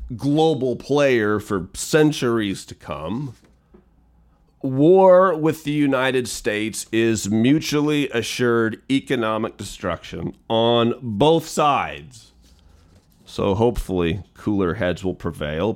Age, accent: 40-59, American